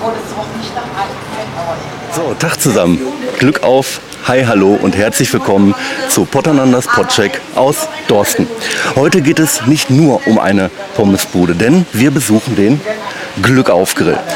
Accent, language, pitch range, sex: German, German, 105-155 Hz, male